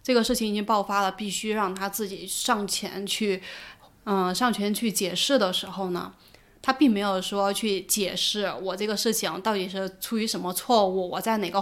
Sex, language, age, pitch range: female, Chinese, 20-39, 185-230 Hz